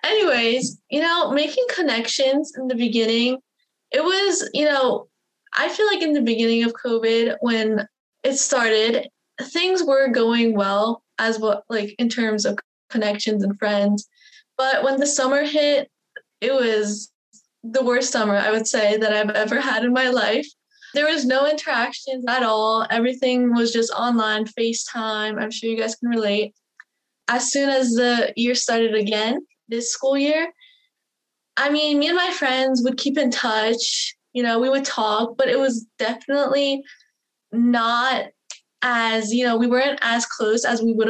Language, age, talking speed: English, 20-39, 165 wpm